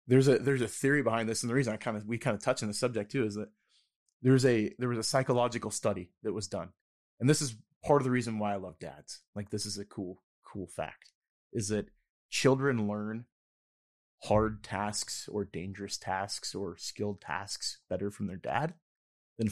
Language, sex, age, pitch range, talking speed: English, male, 20-39, 100-125 Hz, 210 wpm